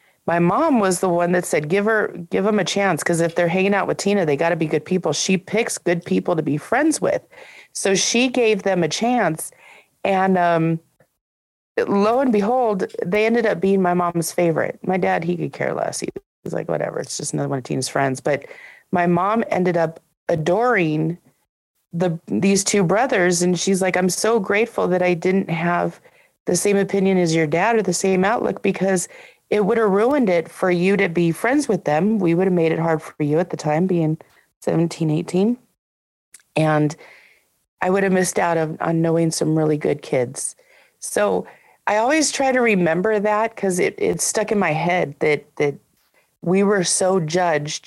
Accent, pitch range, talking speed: American, 160-205 Hz, 200 wpm